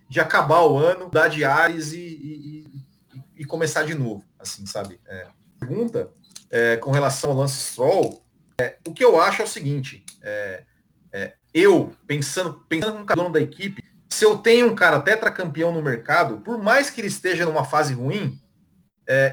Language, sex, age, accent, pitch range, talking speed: Portuguese, male, 40-59, Brazilian, 150-245 Hz, 175 wpm